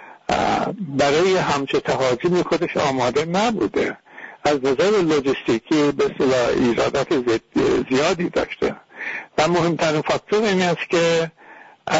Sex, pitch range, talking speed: male, 155-240 Hz, 105 wpm